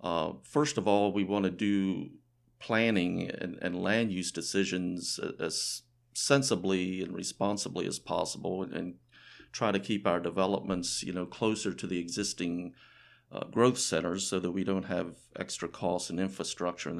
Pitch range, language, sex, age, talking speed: 90-110 Hz, English, male, 50-69, 155 wpm